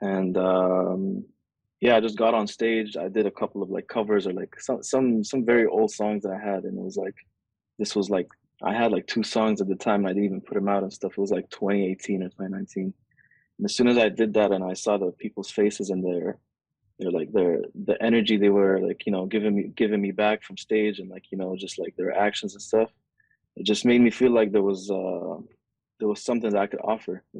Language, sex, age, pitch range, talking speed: Arabic, male, 20-39, 95-110 Hz, 250 wpm